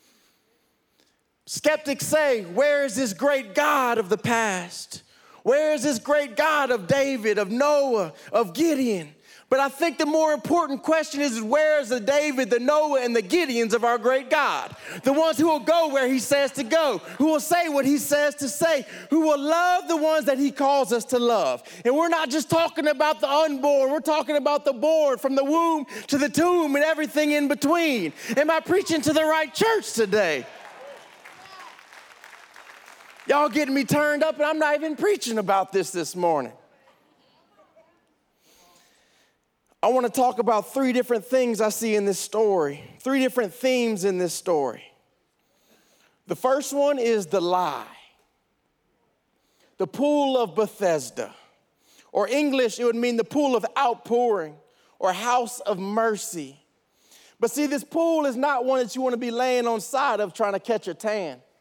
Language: English